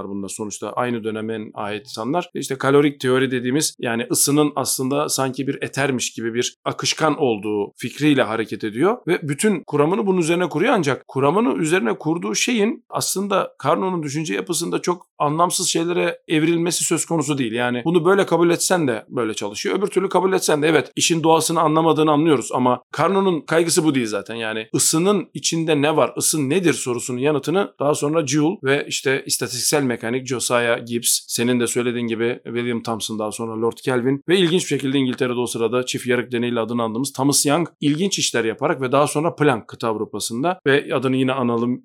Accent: native